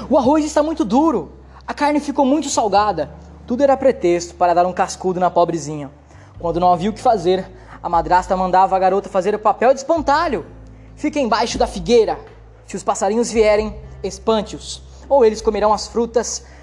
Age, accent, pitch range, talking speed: 20-39, Brazilian, 170-260 Hz, 175 wpm